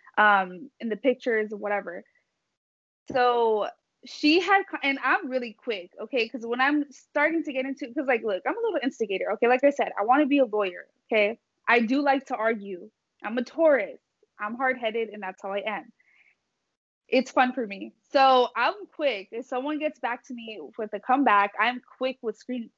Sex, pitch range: female, 220-305 Hz